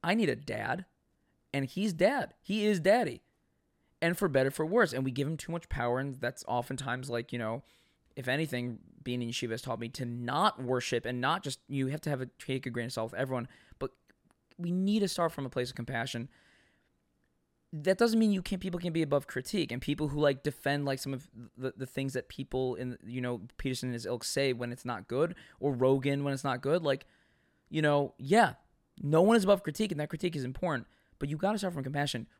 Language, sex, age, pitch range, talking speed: English, male, 20-39, 125-165 Hz, 225 wpm